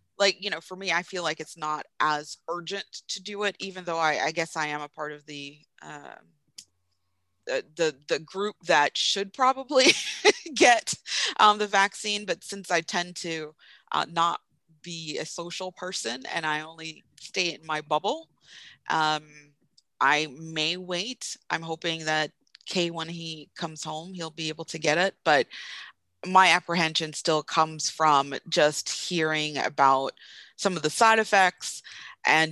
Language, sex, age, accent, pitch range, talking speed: English, female, 30-49, American, 150-175 Hz, 165 wpm